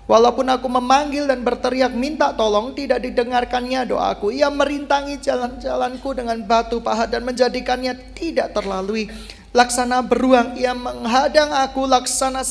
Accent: native